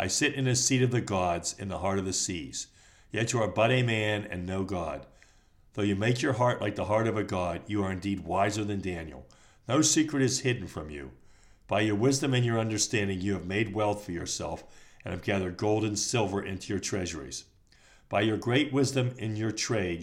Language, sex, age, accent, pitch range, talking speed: English, male, 60-79, American, 95-115 Hz, 220 wpm